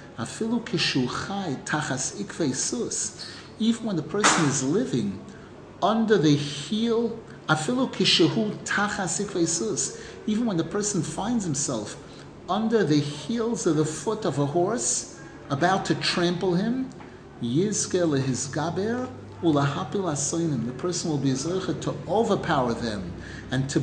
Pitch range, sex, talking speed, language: 135-180 Hz, male, 95 wpm, English